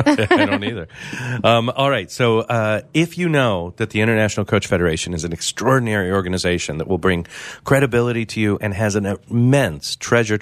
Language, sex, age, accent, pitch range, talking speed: English, male, 40-59, American, 85-120 Hz, 180 wpm